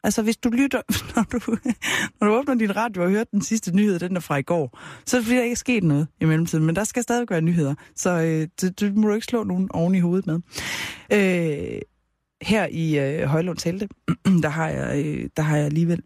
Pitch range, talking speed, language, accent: 145-200 Hz, 240 wpm, Danish, native